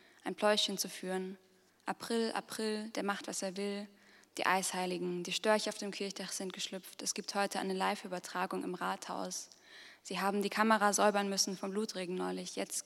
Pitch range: 190-215 Hz